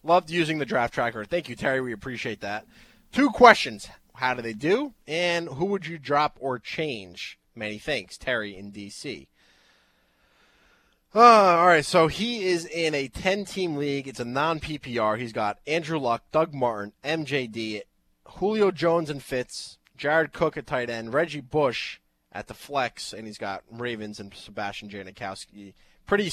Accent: American